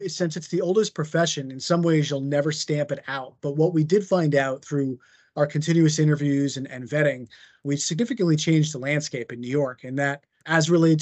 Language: English